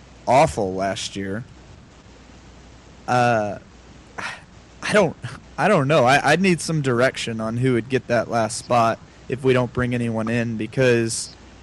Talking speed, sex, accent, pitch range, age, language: 145 wpm, male, American, 115-130 Hz, 20-39, English